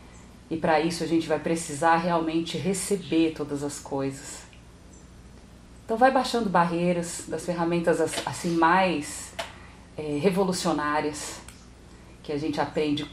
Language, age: Portuguese, 40-59